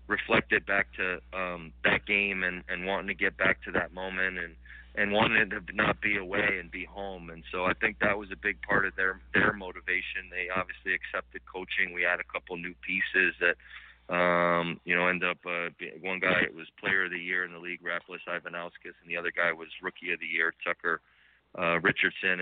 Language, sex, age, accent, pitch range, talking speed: English, male, 40-59, American, 85-95 Hz, 215 wpm